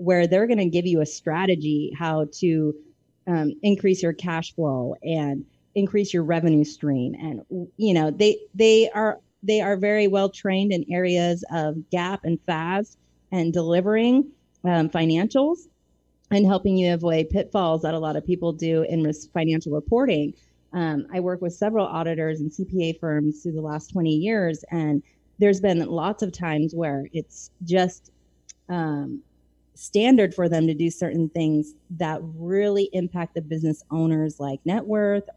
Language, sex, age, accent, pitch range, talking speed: English, female, 30-49, American, 160-200 Hz, 165 wpm